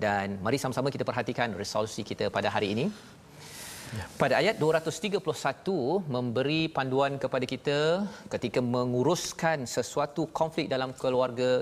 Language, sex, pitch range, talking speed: Malayalam, male, 115-140 Hz, 125 wpm